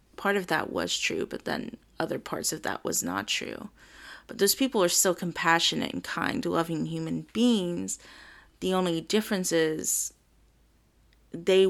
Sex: female